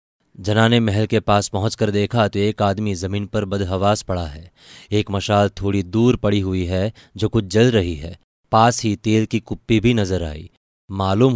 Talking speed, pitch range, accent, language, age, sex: 185 wpm, 95-110 Hz, native, Hindi, 20-39, male